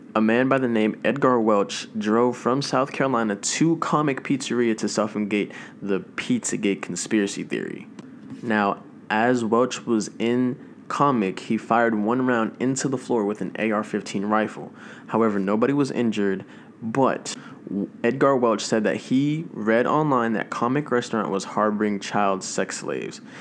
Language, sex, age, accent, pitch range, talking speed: English, male, 20-39, American, 105-120 Hz, 145 wpm